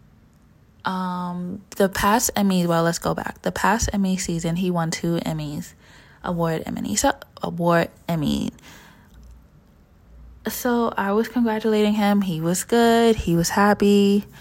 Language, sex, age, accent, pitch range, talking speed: English, female, 20-39, American, 165-200 Hz, 135 wpm